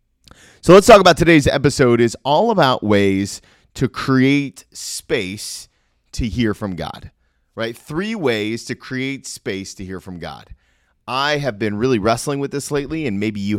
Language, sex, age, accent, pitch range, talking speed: English, male, 30-49, American, 95-140 Hz, 170 wpm